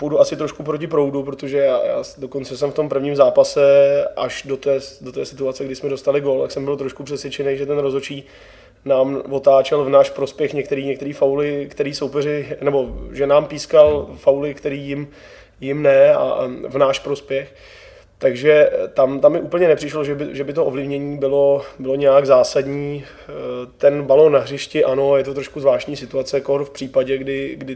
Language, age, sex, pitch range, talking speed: Czech, 20-39, male, 130-140 Hz, 185 wpm